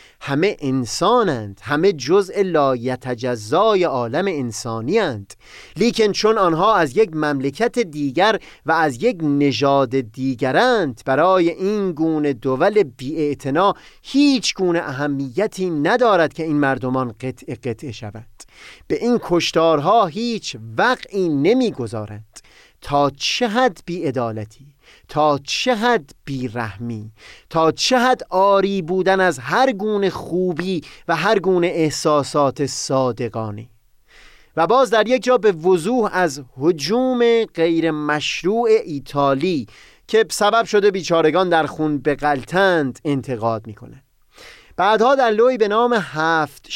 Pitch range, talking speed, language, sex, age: 135-200 Hz, 120 wpm, Persian, male, 30-49